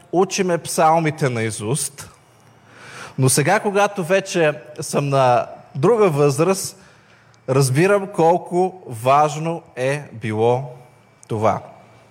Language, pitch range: Bulgarian, 130-165 Hz